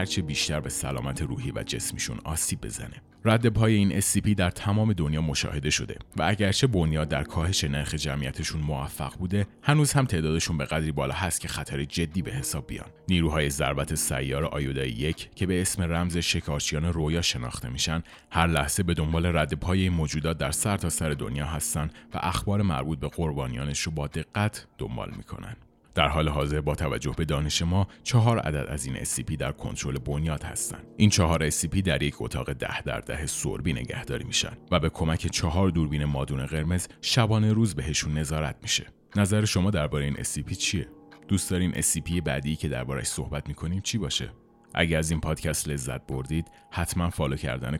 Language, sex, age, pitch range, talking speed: Persian, male, 30-49, 75-95 Hz, 175 wpm